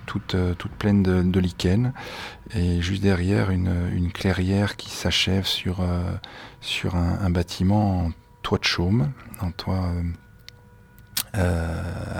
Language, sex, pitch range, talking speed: French, male, 85-105 Hz, 140 wpm